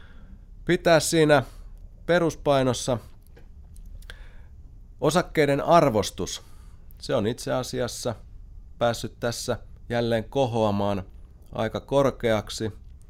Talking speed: 70 wpm